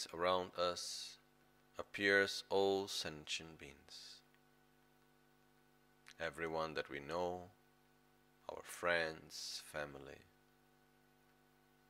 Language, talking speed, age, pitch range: Italian, 65 wpm, 40-59, 90-125 Hz